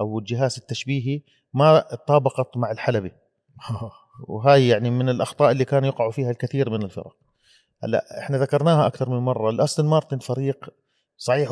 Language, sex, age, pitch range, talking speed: Arabic, male, 30-49, 115-145 Hz, 140 wpm